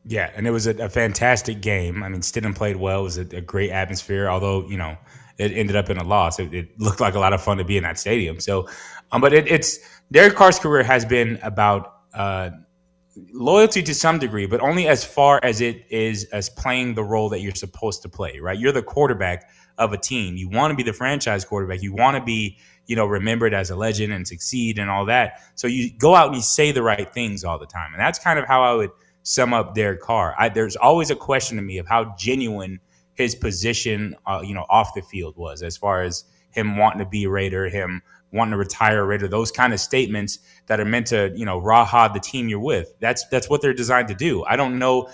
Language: English